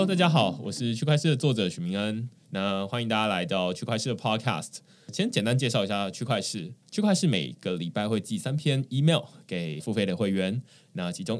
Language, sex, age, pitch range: Chinese, male, 20-39, 100-160 Hz